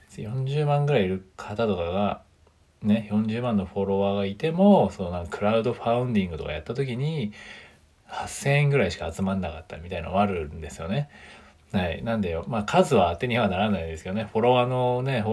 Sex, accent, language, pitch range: male, native, Japanese, 95-125 Hz